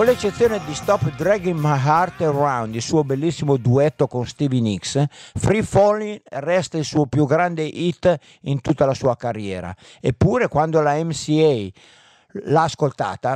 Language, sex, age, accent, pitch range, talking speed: Italian, male, 50-69, native, 130-165 Hz, 155 wpm